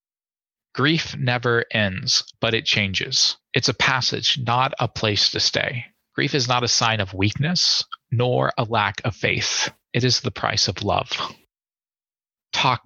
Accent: American